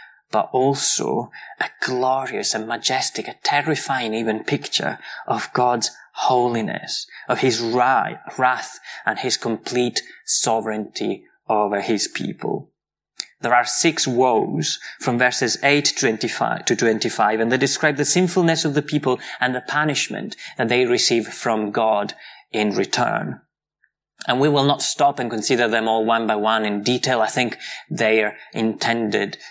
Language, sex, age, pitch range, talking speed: English, male, 20-39, 115-140 Hz, 140 wpm